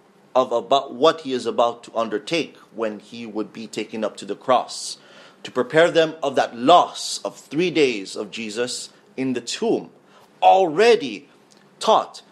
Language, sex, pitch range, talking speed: English, male, 135-205 Hz, 160 wpm